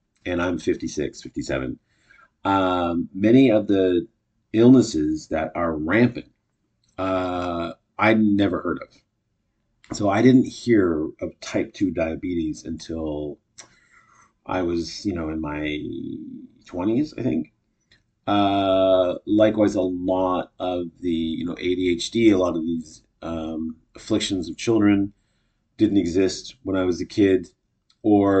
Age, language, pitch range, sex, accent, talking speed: 40-59, English, 90-110 Hz, male, American, 125 wpm